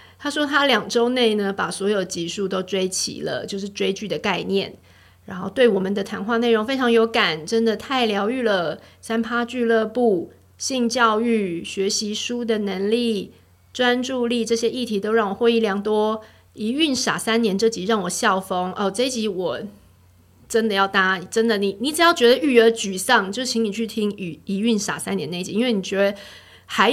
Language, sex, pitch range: Chinese, female, 185-230 Hz